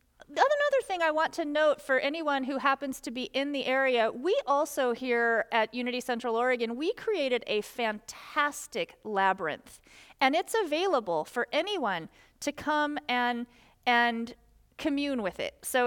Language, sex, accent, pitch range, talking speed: English, female, American, 230-280 Hz, 150 wpm